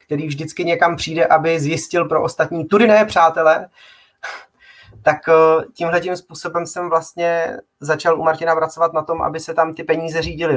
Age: 30-49